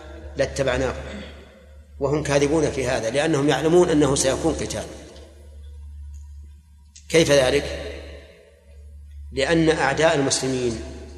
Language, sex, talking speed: Arabic, male, 80 wpm